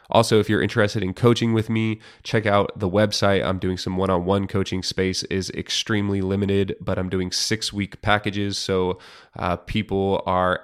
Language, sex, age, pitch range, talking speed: English, male, 20-39, 95-105 Hz, 170 wpm